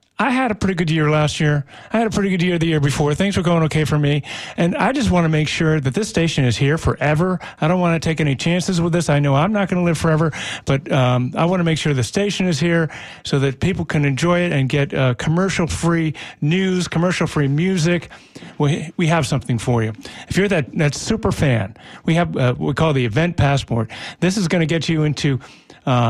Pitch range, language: 140-175 Hz, English